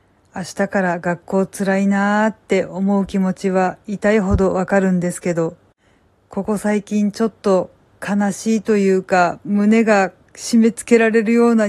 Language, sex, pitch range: Japanese, female, 185-215 Hz